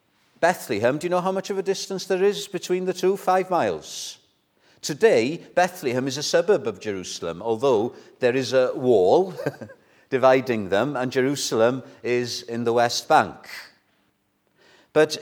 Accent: British